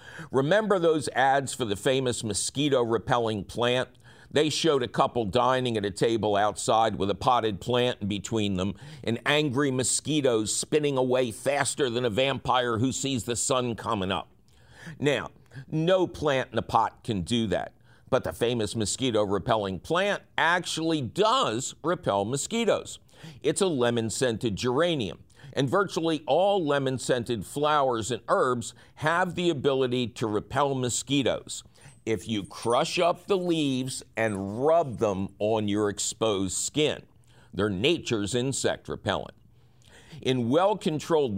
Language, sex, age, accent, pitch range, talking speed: English, male, 50-69, American, 110-145 Hz, 135 wpm